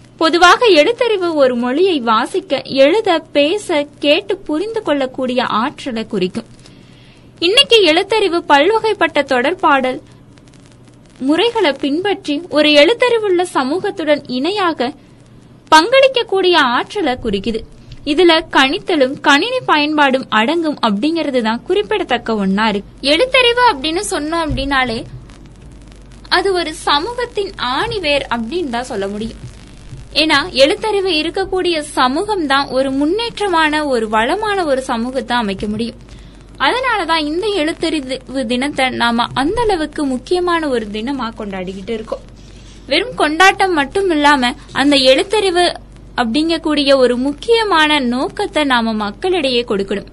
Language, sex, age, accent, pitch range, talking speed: Tamil, female, 20-39, native, 255-365 Hz, 100 wpm